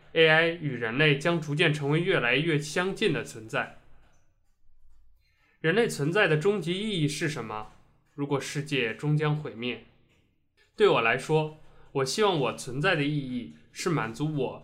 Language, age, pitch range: Chinese, 20-39, 125-165 Hz